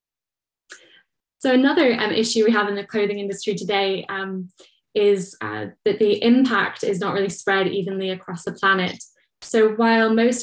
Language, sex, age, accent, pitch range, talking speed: English, female, 10-29, British, 195-215 Hz, 160 wpm